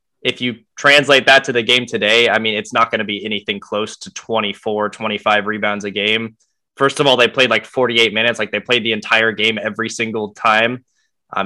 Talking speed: 215 wpm